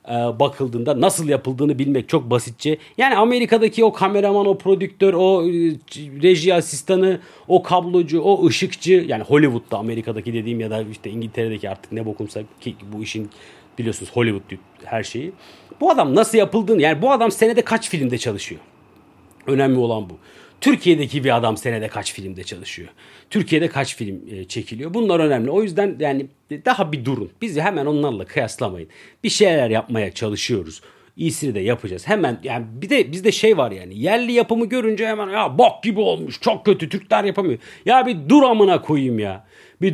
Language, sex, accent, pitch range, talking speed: Turkish, male, native, 120-190 Hz, 160 wpm